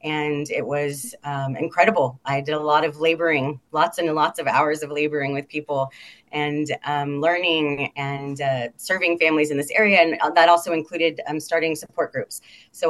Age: 30-49